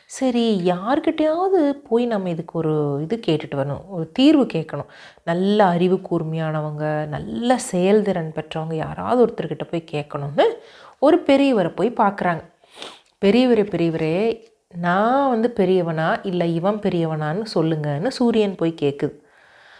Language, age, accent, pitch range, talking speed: Tamil, 30-49, native, 165-230 Hz, 115 wpm